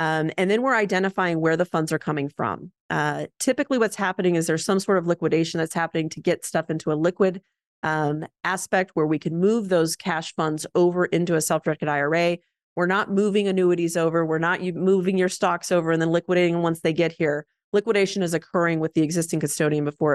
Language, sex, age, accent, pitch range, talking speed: English, female, 30-49, American, 165-195 Hz, 205 wpm